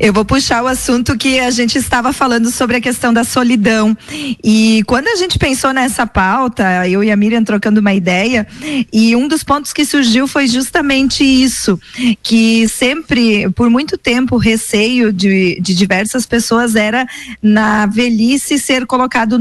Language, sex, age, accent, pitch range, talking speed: Portuguese, female, 20-39, Brazilian, 210-250 Hz, 165 wpm